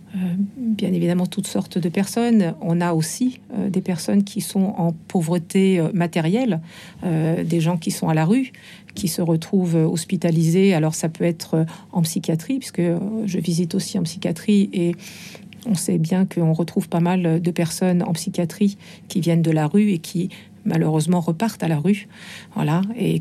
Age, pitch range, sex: 50-69, 170-195 Hz, female